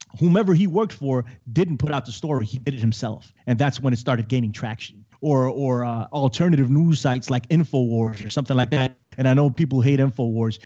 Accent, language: American, English